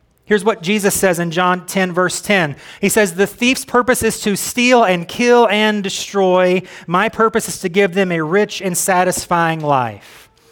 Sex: male